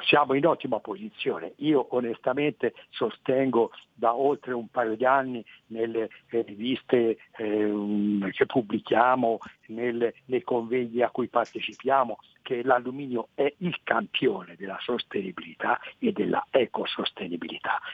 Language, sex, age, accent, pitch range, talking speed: Italian, male, 60-79, native, 115-150 Hz, 105 wpm